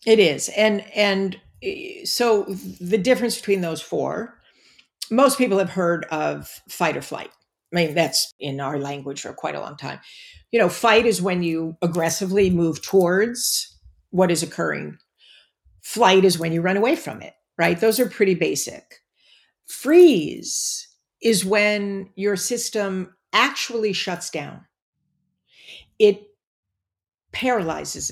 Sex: female